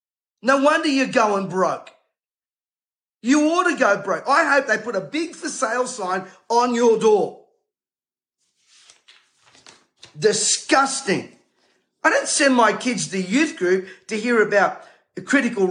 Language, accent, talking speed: English, Australian, 140 wpm